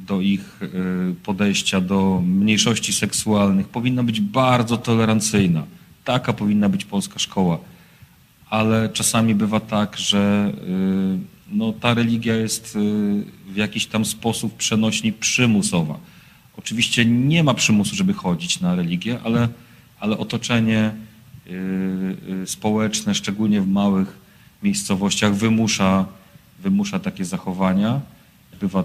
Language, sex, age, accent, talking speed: Polish, male, 40-59, native, 105 wpm